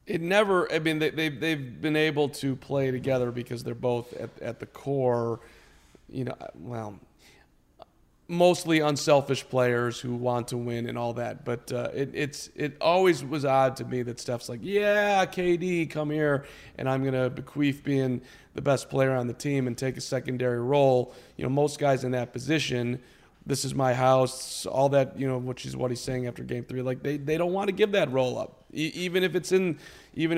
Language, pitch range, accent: English, 130-180 Hz, American